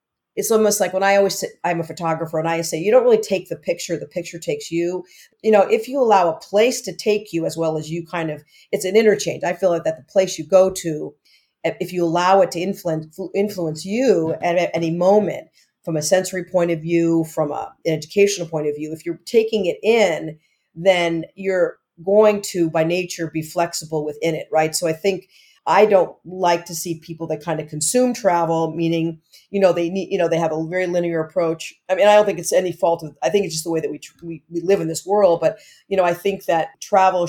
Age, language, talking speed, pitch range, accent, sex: 40-59, English, 240 wpm, 165-190 Hz, American, female